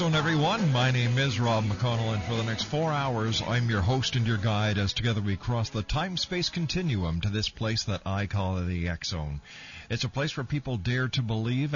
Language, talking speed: English, 220 wpm